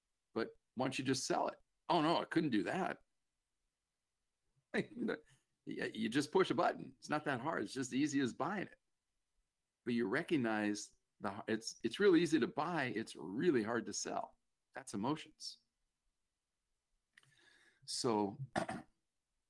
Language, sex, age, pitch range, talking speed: English, male, 50-69, 105-145 Hz, 140 wpm